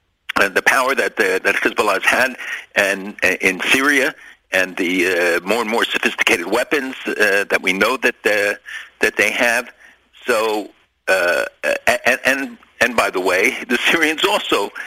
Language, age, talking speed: English, 60-79, 160 wpm